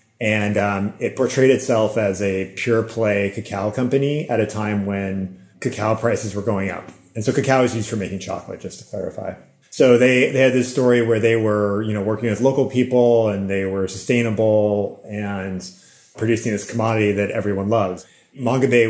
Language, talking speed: English, 185 wpm